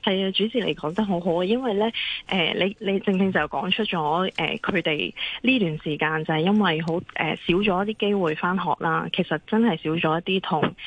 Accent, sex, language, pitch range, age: native, female, Chinese, 160-200 Hz, 20-39